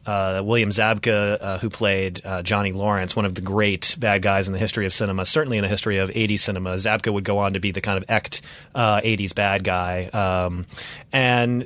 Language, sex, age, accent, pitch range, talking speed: English, male, 30-49, American, 105-135 Hz, 220 wpm